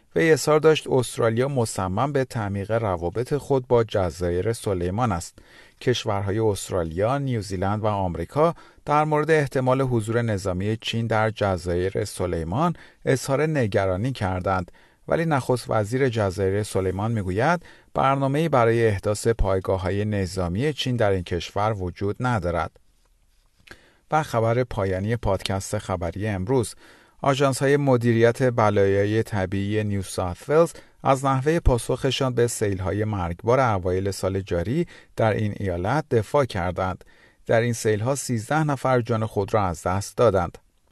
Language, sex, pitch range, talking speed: Persian, male, 95-130 Hz, 125 wpm